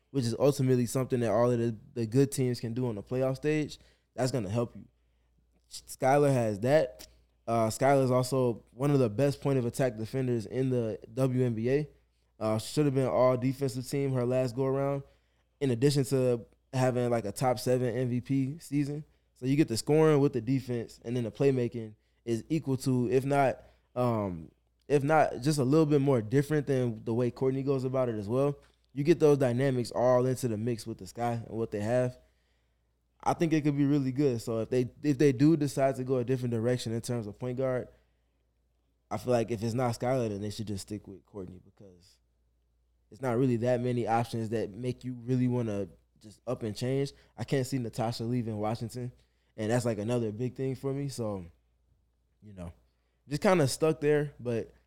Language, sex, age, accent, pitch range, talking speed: English, male, 20-39, American, 105-135 Hz, 205 wpm